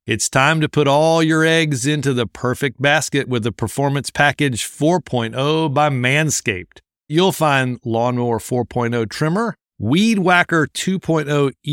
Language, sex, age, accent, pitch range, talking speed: English, male, 50-69, American, 120-160 Hz, 135 wpm